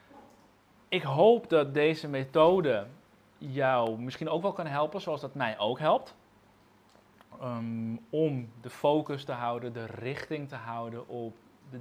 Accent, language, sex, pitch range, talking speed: Dutch, Dutch, male, 115-140 Hz, 135 wpm